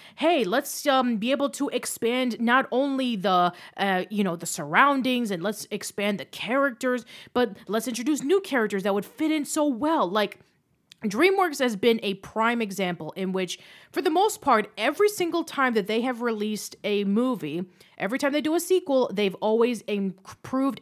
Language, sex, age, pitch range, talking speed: English, female, 30-49, 190-265 Hz, 180 wpm